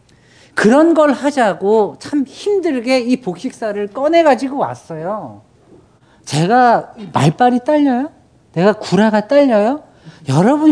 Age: 40-59